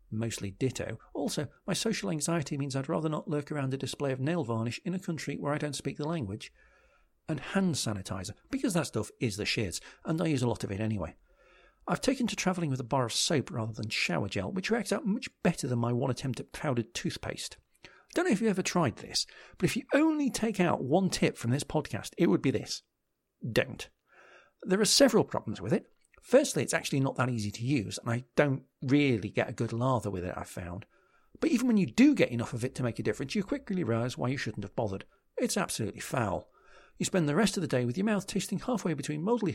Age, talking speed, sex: 50-69, 235 wpm, male